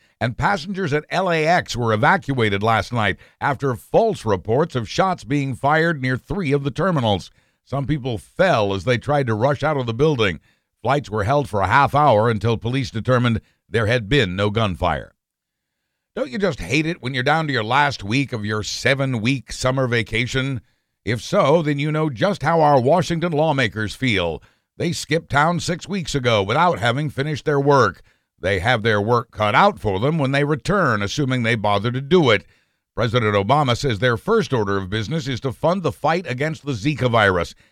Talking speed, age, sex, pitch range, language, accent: 190 wpm, 60-79, male, 115-150 Hz, English, American